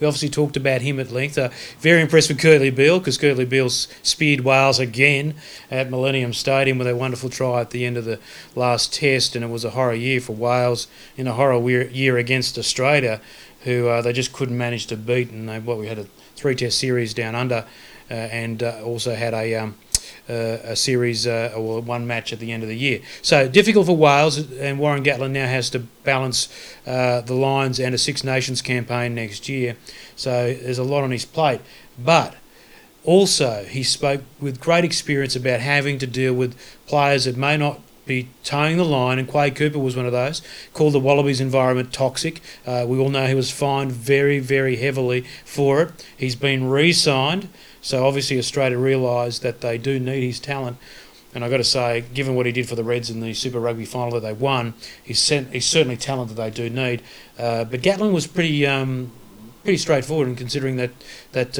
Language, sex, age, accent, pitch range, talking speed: English, male, 30-49, Australian, 120-140 Hz, 205 wpm